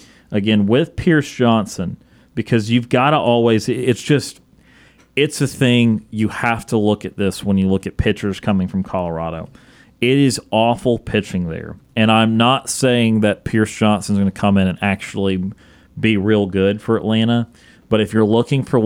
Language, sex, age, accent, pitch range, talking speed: English, male, 30-49, American, 100-125 Hz, 180 wpm